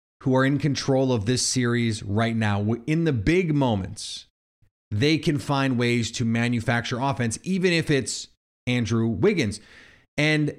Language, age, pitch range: English, 30-49, 110-145 Hz